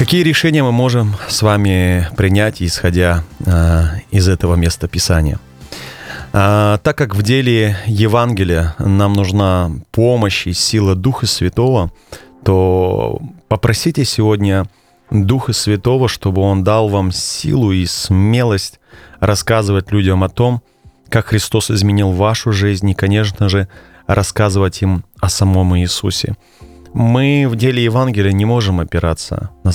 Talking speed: 125 wpm